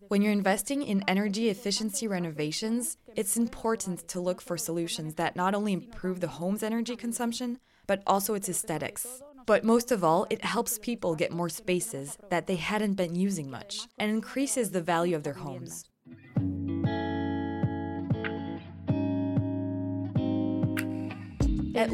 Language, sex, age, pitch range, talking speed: French, female, 20-39, 170-225 Hz, 135 wpm